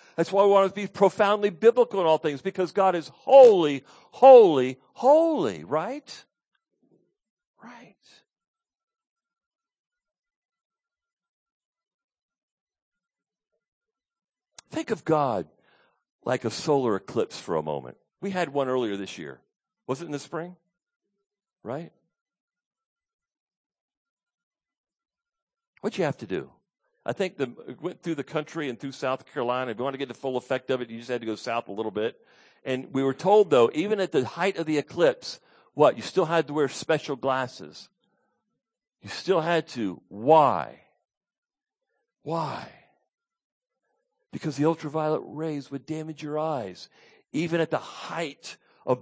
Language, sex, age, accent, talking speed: English, male, 50-69, American, 140 wpm